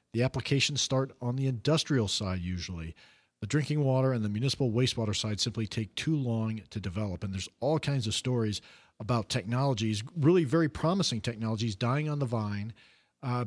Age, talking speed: 40-59, 175 wpm